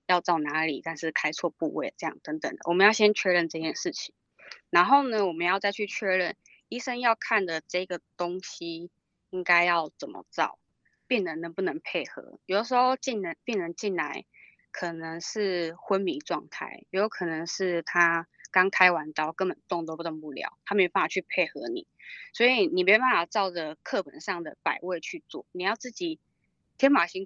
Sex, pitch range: female, 170-220 Hz